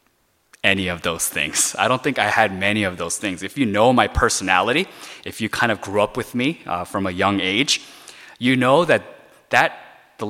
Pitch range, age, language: 105-155 Hz, 20-39, Korean